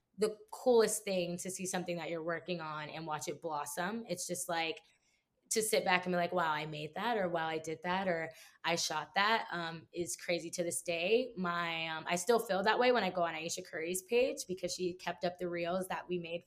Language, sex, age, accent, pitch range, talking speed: English, female, 20-39, American, 175-220 Hz, 240 wpm